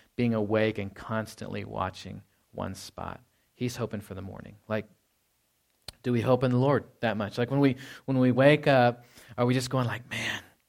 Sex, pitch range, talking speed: male, 105-135 Hz, 190 wpm